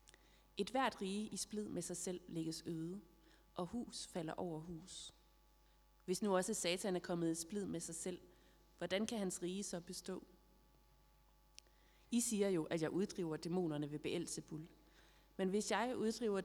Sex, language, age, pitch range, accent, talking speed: female, Danish, 30-49, 165-195 Hz, native, 165 wpm